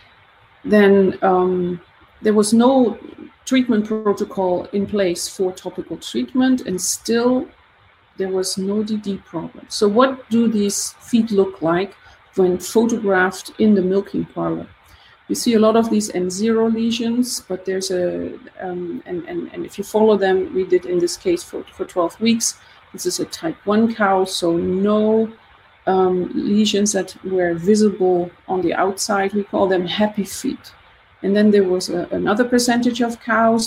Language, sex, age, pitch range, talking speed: Danish, female, 40-59, 185-225 Hz, 160 wpm